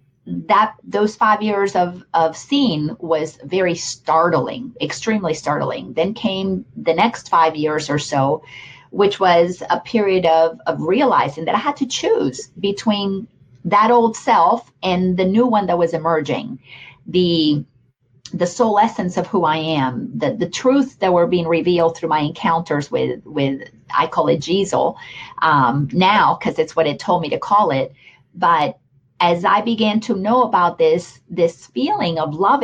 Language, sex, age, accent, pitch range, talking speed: English, female, 40-59, American, 155-220 Hz, 165 wpm